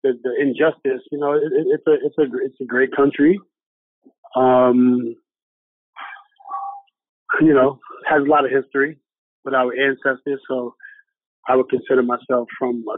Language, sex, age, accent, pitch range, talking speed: English, male, 30-49, American, 125-155 Hz, 145 wpm